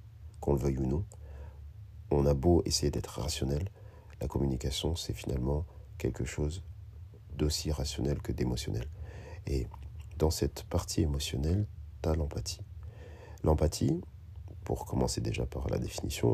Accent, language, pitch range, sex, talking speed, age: French, French, 70-95 Hz, male, 130 wpm, 50-69